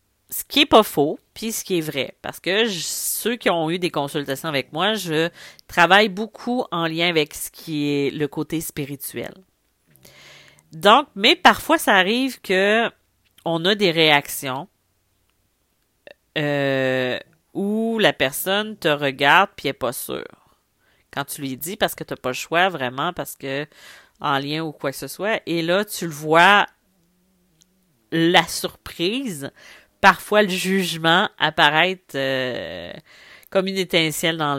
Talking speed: 155 wpm